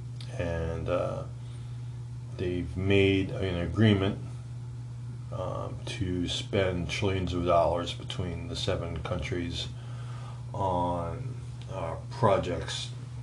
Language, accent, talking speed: English, American, 85 wpm